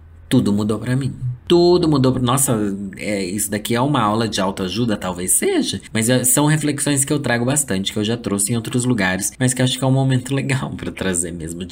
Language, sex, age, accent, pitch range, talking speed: Portuguese, male, 20-39, Brazilian, 95-140 Hz, 235 wpm